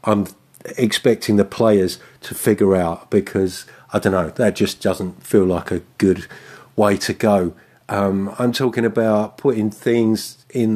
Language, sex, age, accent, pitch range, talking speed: English, male, 50-69, British, 100-125 Hz, 155 wpm